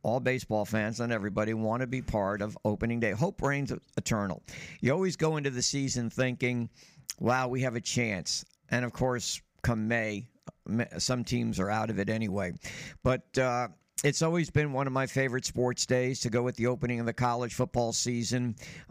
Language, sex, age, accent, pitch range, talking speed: English, male, 60-79, American, 115-140 Hz, 190 wpm